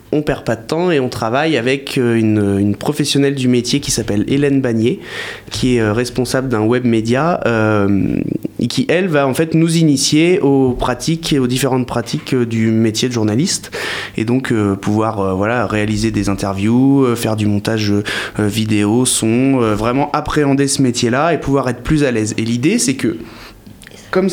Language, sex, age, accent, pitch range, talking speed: French, male, 20-39, French, 110-150 Hz, 185 wpm